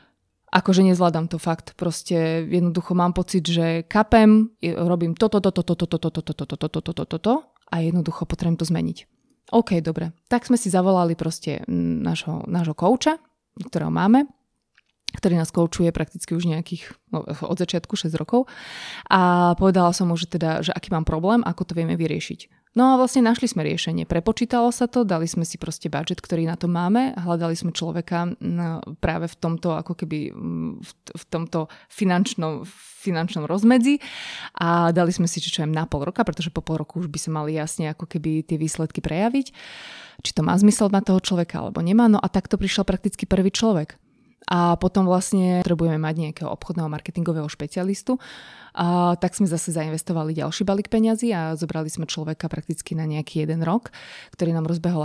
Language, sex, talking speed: Slovak, female, 170 wpm